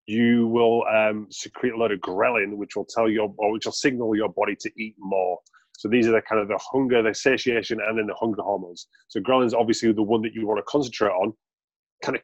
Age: 30-49